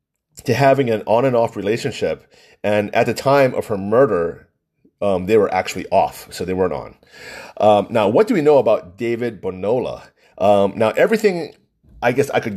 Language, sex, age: English, male, 30-49